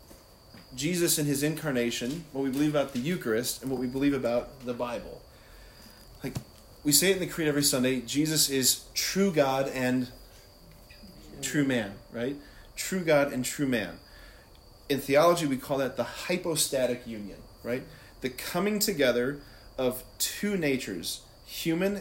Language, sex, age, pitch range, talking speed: English, male, 30-49, 120-150 Hz, 145 wpm